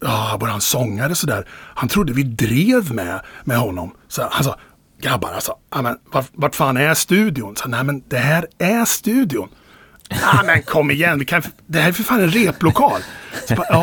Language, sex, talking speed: Swedish, male, 210 wpm